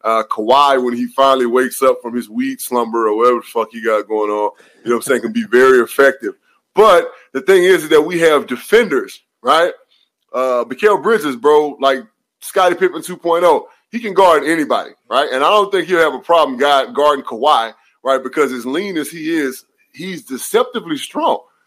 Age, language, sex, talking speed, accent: 20-39, English, male, 195 wpm, American